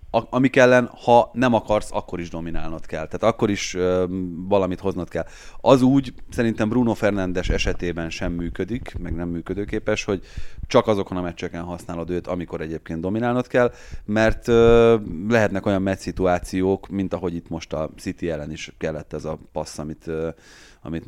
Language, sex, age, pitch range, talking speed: Hungarian, male, 30-49, 85-110 Hz, 160 wpm